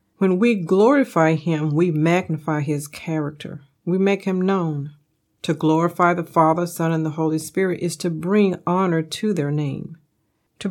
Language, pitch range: English, 150-190 Hz